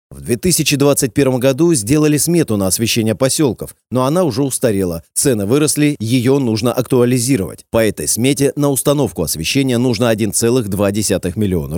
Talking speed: 130 wpm